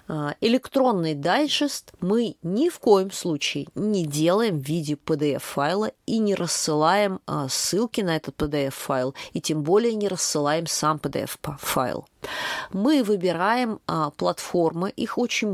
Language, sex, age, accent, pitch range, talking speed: Russian, female, 30-49, native, 150-220 Hz, 120 wpm